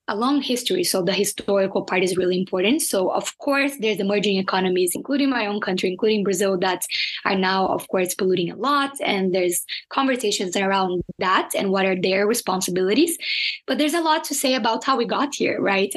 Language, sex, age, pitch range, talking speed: English, female, 20-39, 190-230 Hz, 195 wpm